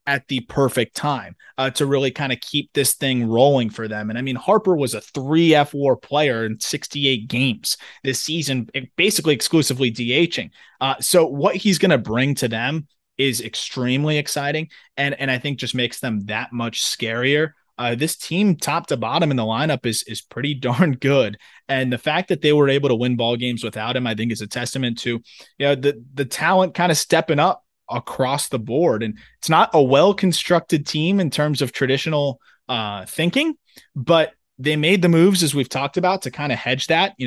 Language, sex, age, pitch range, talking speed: English, male, 20-39, 125-155 Hz, 200 wpm